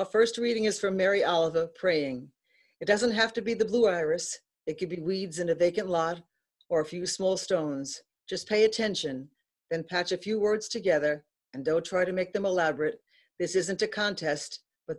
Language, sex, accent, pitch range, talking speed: English, female, American, 160-210 Hz, 200 wpm